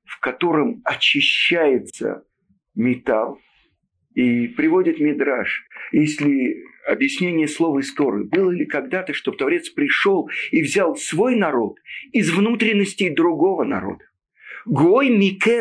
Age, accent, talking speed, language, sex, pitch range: 50-69, native, 100 wpm, Russian, male, 165-260 Hz